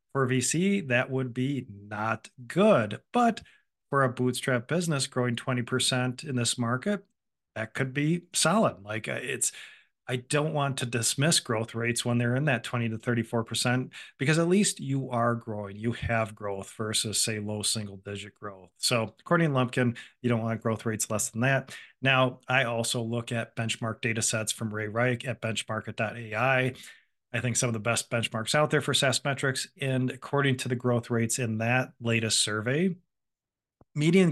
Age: 40-59